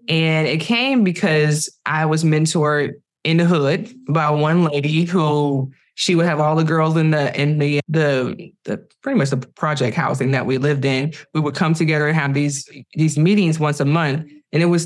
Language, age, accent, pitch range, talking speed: English, 20-39, American, 145-175 Hz, 200 wpm